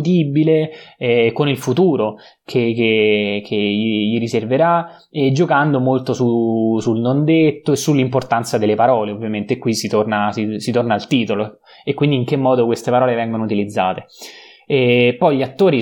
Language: Italian